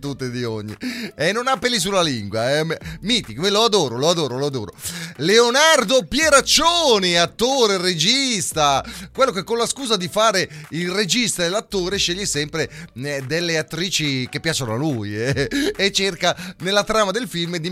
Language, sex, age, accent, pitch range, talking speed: Italian, male, 30-49, native, 155-225 Hz, 175 wpm